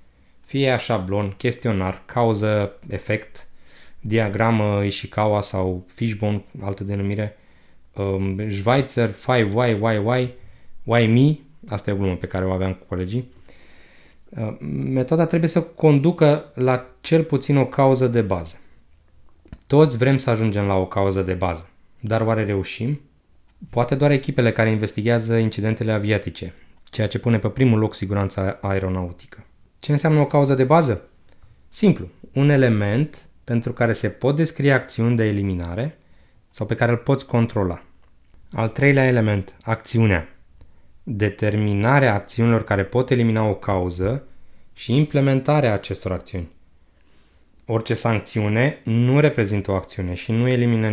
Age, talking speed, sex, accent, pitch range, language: 20-39, 130 wpm, male, native, 95-125 Hz, Romanian